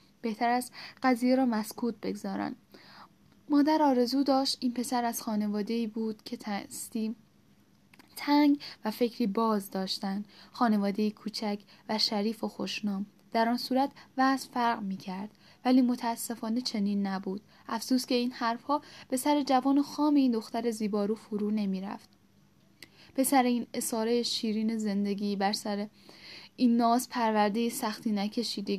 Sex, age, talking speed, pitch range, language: female, 10-29, 135 wpm, 205-245 Hz, Persian